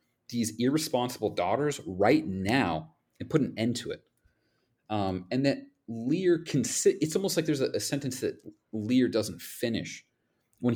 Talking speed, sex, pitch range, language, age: 160 wpm, male, 105-155 Hz, English, 30-49